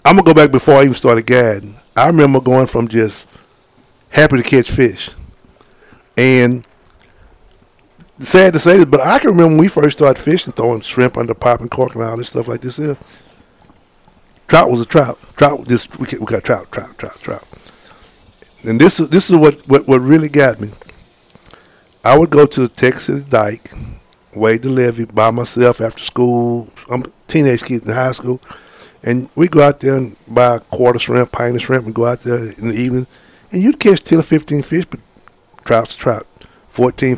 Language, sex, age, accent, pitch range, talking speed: English, male, 50-69, American, 115-145 Hz, 195 wpm